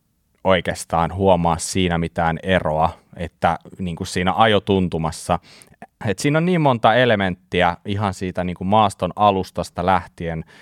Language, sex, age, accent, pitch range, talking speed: Finnish, male, 30-49, native, 85-100 Hz, 130 wpm